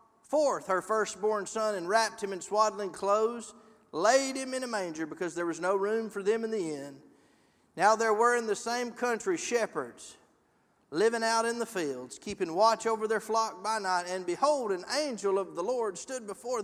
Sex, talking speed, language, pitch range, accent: male, 195 wpm, English, 195-250 Hz, American